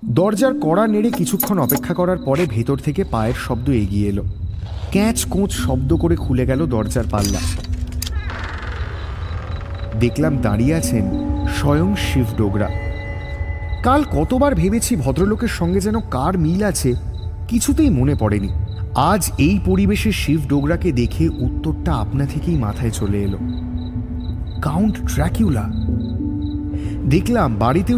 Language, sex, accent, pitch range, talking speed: English, male, Indian, 90-130 Hz, 110 wpm